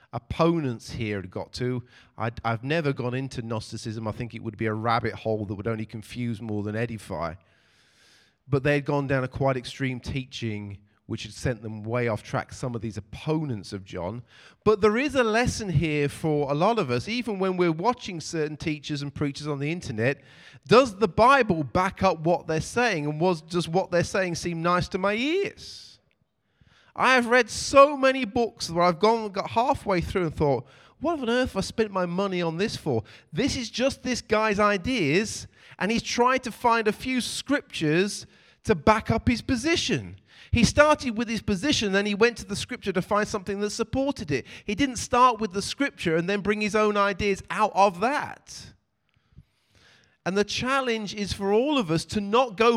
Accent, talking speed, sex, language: British, 200 wpm, male, English